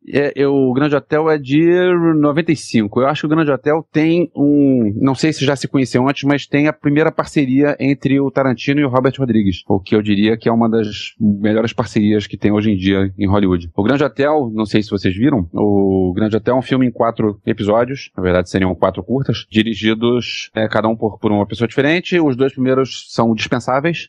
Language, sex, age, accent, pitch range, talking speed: Portuguese, male, 30-49, Brazilian, 110-135 Hz, 210 wpm